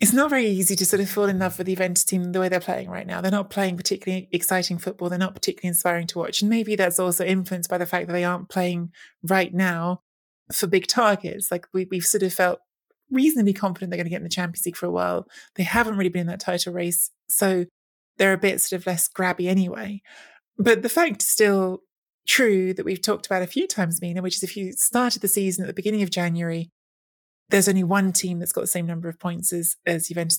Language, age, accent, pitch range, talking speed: English, 20-39, British, 175-195 Hz, 245 wpm